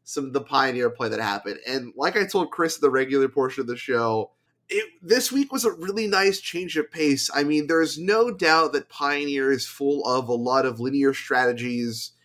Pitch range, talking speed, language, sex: 120-160 Hz, 210 wpm, English, male